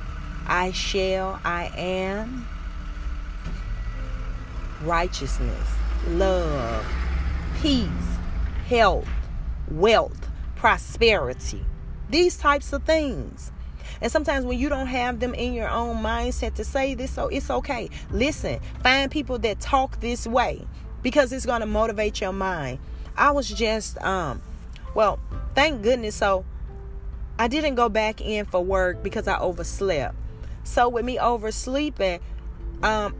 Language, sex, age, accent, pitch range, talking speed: English, female, 30-49, American, 165-230 Hz, 125 wpm